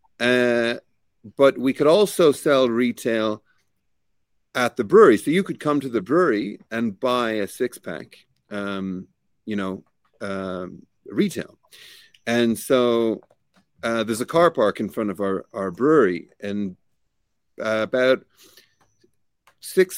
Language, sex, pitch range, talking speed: English, male, 105-125 Hz, 125 wpm